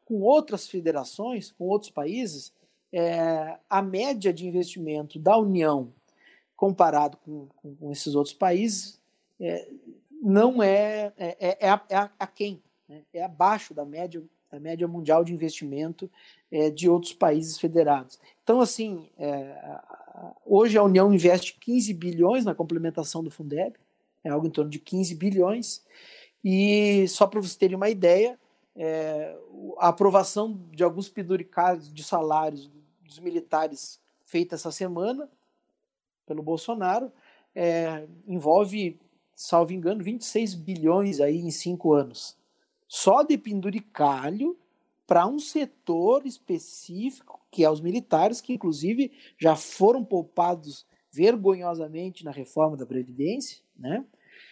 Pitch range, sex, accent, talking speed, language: 160-205 Hz, male, Brazilian, 125 wpm, Portuguese